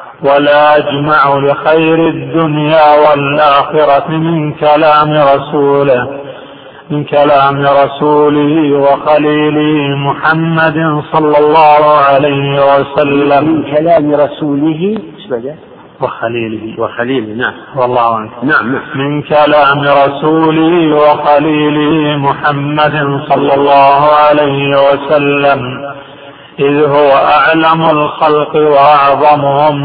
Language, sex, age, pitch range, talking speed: Arabic, male, 50-69, 140-150 Hz, 90 wpm